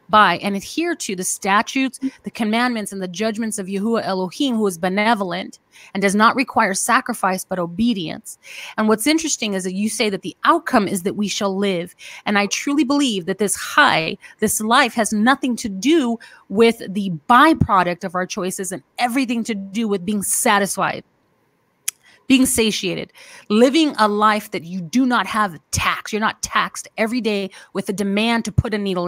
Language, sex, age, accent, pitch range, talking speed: English, female, 30-49, American, 195-230 Hz, 180 wpm